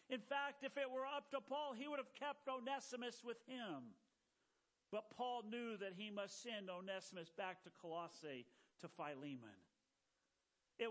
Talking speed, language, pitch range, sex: 160 wpm, English, 195-250 Hz, male